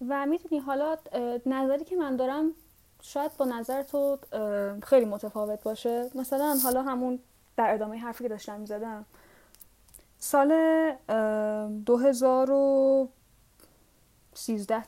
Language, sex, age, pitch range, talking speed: Persian, female, 10-29, 220-280 Hz, 105 wpm